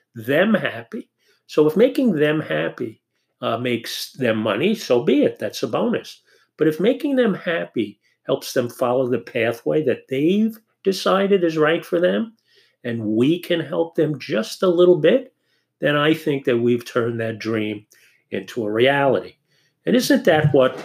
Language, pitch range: English, 120-180 Hz